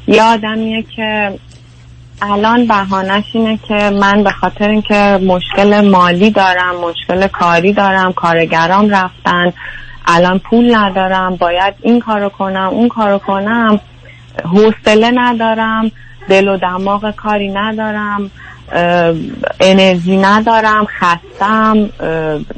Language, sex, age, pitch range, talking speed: Persian, female, 30-49, 185-215 Hz, 105 wpm